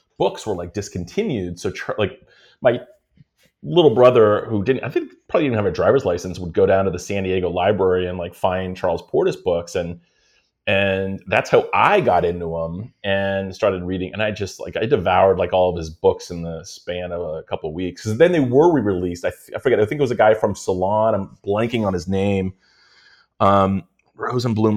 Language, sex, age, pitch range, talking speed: English, male, 30-49, 90-115 Hz, 210 wpm